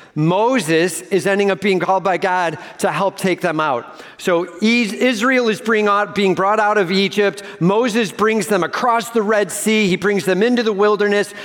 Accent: American